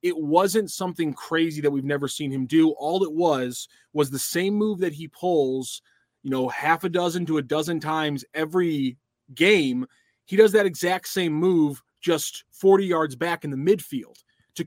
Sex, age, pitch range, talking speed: male, 20-39, 150-180 Hz, 185 wpm